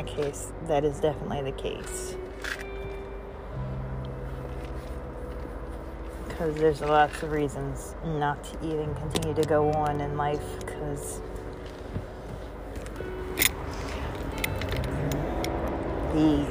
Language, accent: English, American